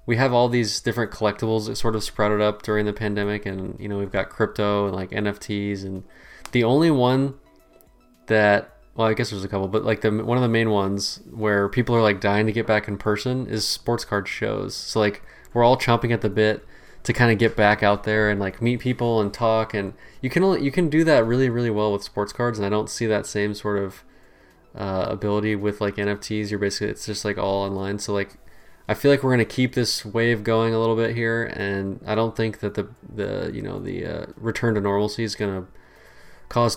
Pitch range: 100-115 Hz